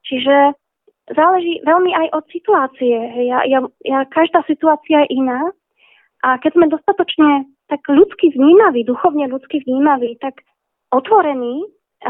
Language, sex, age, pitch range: Slovak, female, 20-39, 255-325 Hz